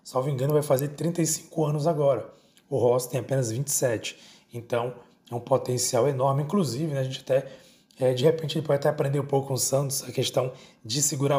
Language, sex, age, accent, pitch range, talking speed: Portuguese, male, 20-39, Brazilian, 125-155 Hz, 200 wpm